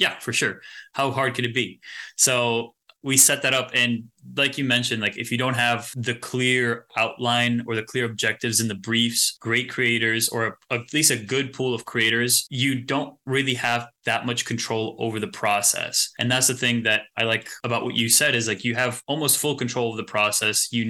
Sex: male